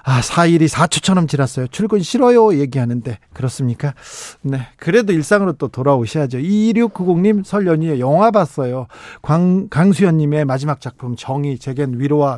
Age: 40-59